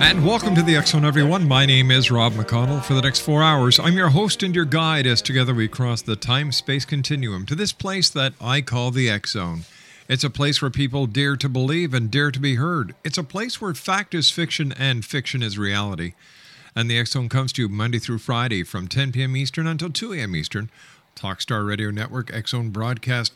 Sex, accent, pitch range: male, American, 110-145 Hz